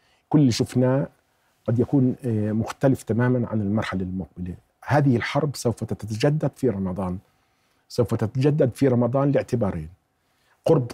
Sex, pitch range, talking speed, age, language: male, 115-145 Hz, 120 wpm, 50-69, Arabic